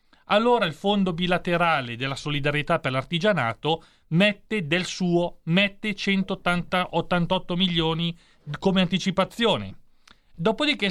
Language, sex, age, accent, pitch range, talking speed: Italian, male, 40-59, native, 135-195 Hz, 90 wpm